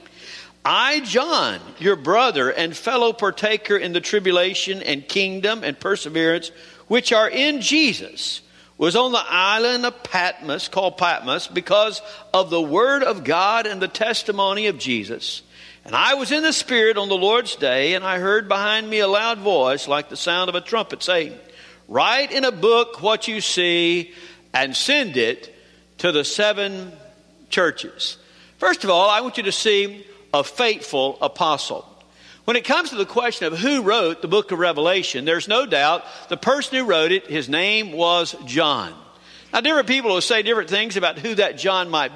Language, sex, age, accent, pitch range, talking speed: English, male, 50-69, American, 170-230 Hz, 175 wpm